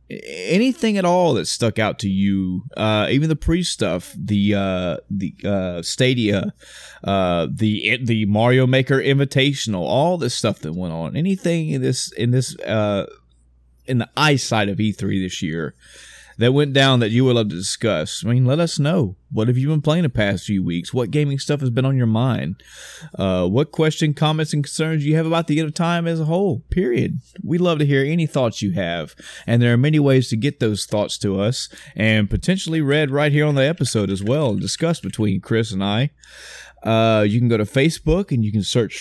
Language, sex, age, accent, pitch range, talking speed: English, male, 30-49, American, 105-150 Hz, 210 wpm